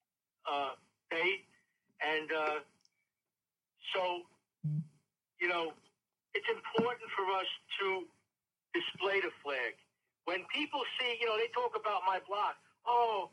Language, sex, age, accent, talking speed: English, male, 60-79, American, 115 wpm